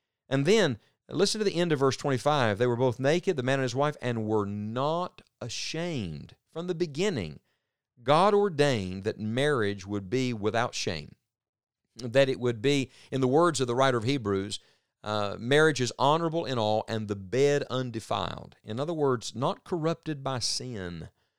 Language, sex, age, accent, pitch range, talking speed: English, male, 50-69, American, 105-145 Hz, 175 wpm